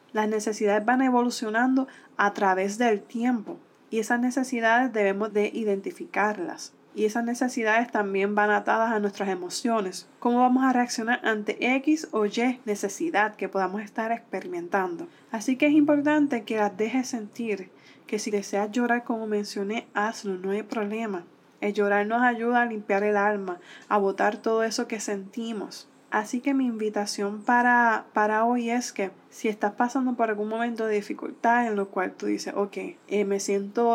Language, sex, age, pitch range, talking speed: Spanish, female, 20-39, 205-240 Hz, 165 wpm